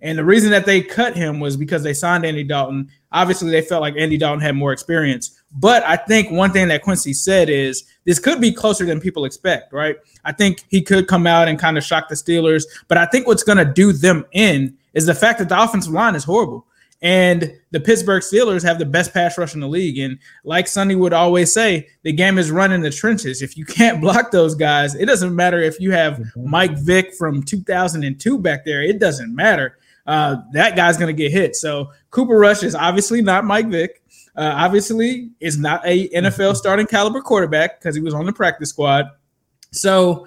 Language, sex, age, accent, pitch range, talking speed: English, male, 20-39, American, 155-195 Hz, 220 wpm